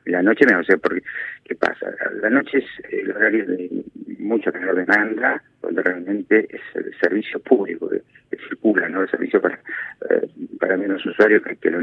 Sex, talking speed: male, 180 wpm